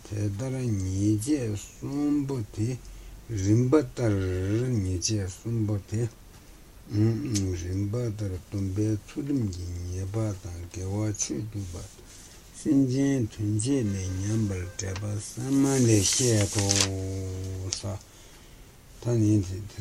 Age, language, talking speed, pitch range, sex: 60-79, Italian, 65 wpm, 95-110 Hz, male